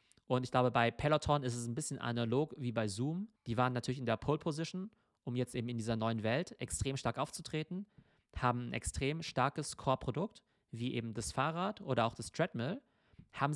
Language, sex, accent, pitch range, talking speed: German, male, German, 115-145 Hz, 195 wpm